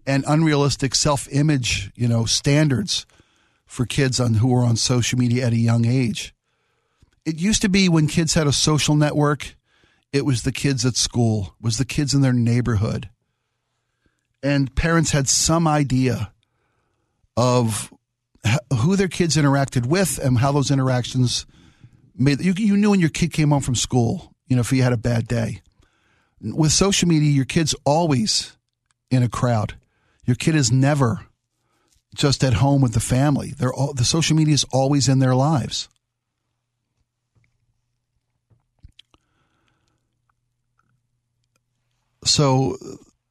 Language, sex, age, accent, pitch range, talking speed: English, male, 50-69, American, 120-145 Hz, 145 wpm